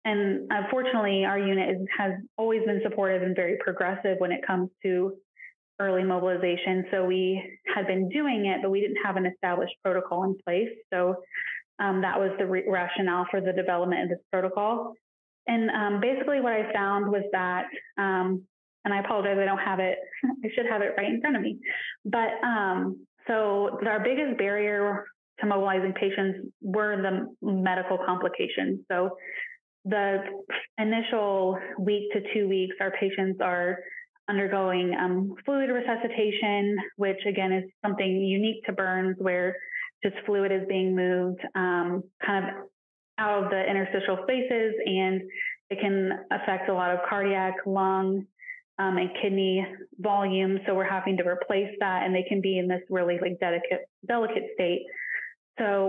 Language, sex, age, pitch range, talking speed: English, female, 20-39, 185-210 Hz, 160 wpm